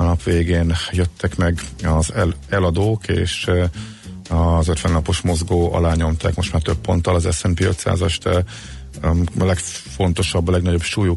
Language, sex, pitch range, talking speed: Hungarian, male, 85-95 Hz, 140 wpm